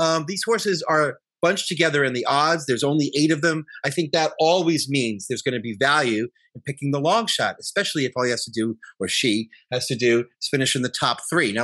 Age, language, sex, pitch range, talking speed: 30-49, English, male, 120-155 Hz, 245 wpm